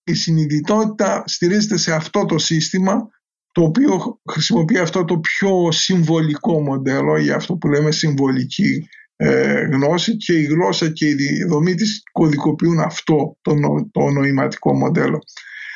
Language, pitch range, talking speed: Greek, 155-185 Hz, 125 wpm